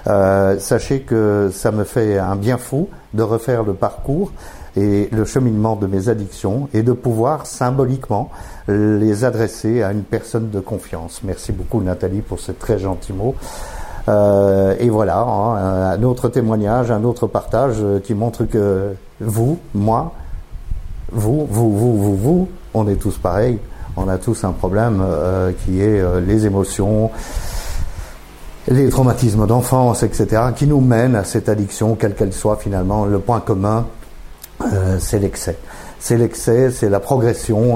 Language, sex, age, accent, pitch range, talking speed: French, male, 50-69, French, 95-115 Hz, 155 wpm